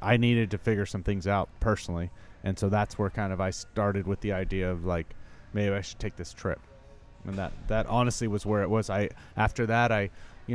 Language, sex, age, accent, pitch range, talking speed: English, male, 30-49, American, 95-110 Hz, 230 wpm